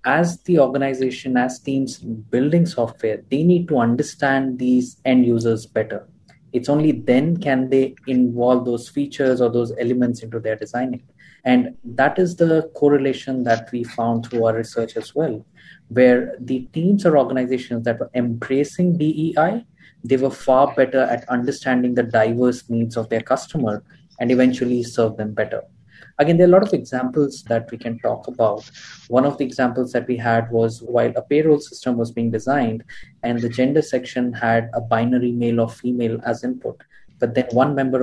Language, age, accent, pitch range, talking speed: English, 20-39, Indian, 115-135 Hz, 175 wpm